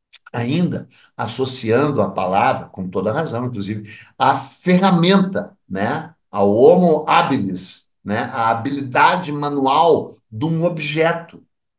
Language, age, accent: Portuguese, 60-79, Brazilian